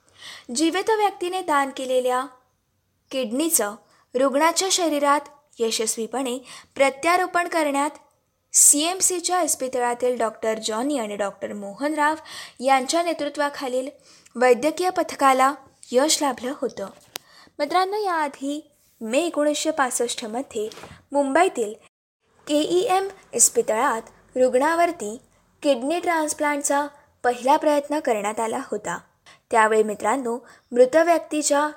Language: Marathi